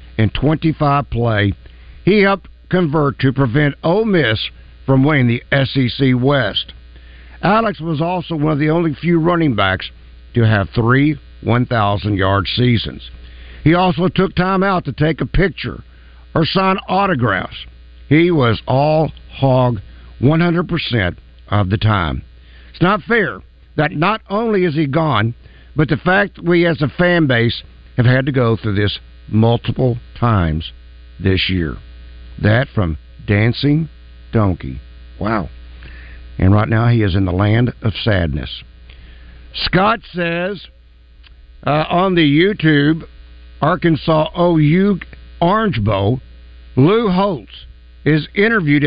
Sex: male